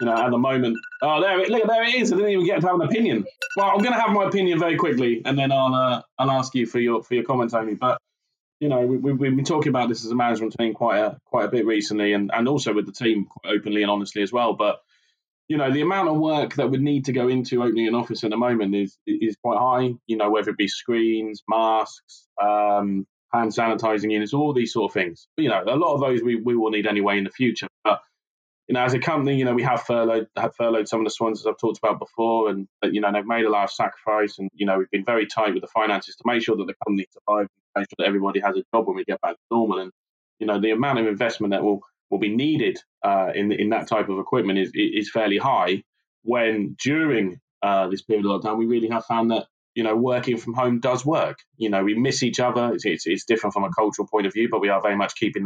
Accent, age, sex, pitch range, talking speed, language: British, 20-39, male, 105-130 Hz, 275 wpm, English